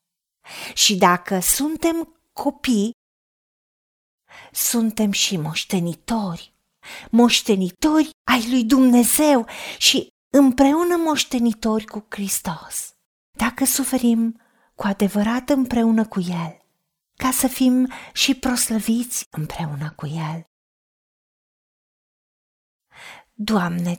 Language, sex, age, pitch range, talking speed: Romanian, female, 30-49, 205-260 Hz, 80 wpm